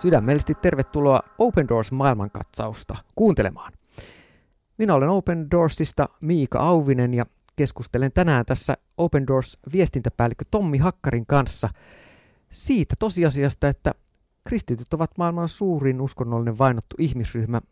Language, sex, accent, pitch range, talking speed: Finnish, male, native, 115-160 Hz, 100 wpm